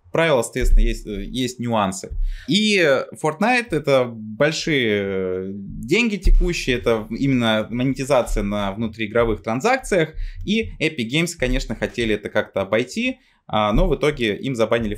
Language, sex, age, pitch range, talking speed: Russian, male, 20-39, 100-135 Hz, 130 wpm